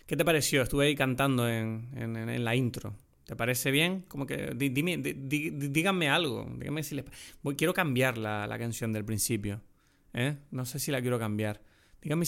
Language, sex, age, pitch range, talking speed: Spanish, male, 20-39, 115-145 Hz, 140 wpm